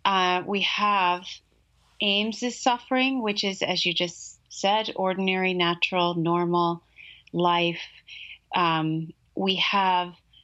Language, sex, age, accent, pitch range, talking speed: English, female, 30-49, American, 160-200 Hz, 105 wpm